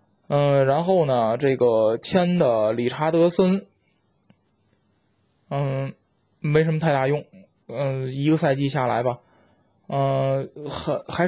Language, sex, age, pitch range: Chinese, male, 20-39, 130-160 Hz